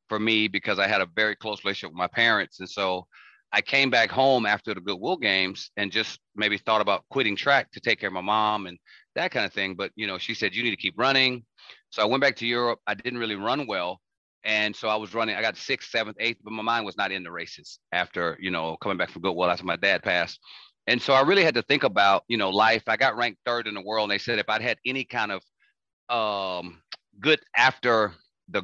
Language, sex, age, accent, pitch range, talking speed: English, male, 30-49, American, 95-115 Hz, 255 wpm